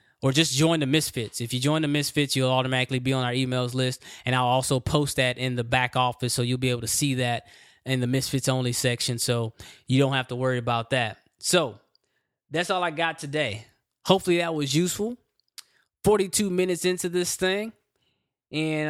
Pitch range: 130-150 Hz